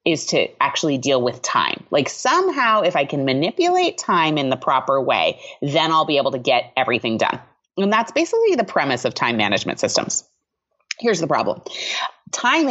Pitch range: 140-220 Hz